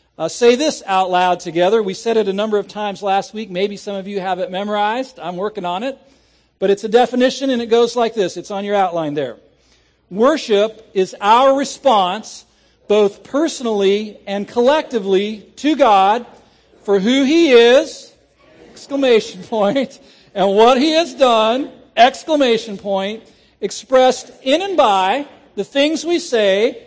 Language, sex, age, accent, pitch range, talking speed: English, male, 50-69, American, 195-275 Hz, 160 wpm